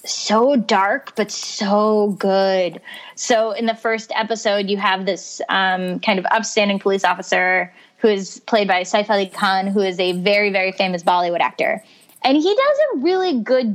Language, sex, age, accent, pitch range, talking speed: English, female, 20-39, American, 195-230 Hz, 175 wpm